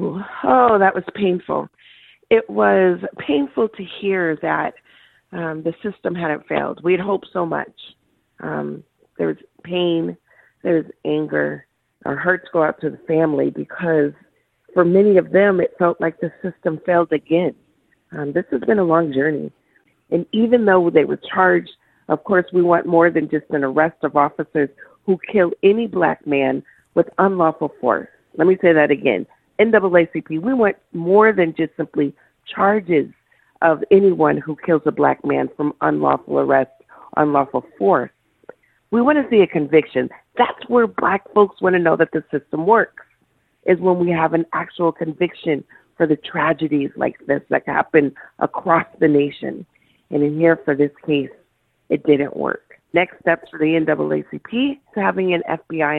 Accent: American